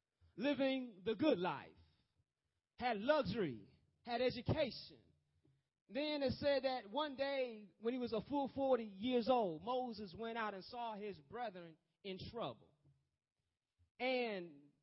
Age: 30-49